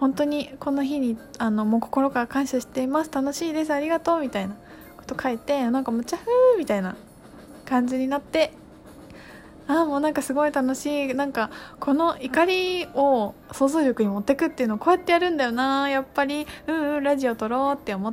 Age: 20-39